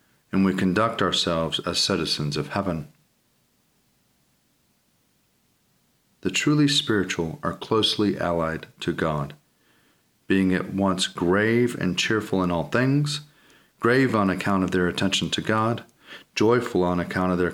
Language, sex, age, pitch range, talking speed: English, male, 40-59, 90-105 Hz, 130 wpm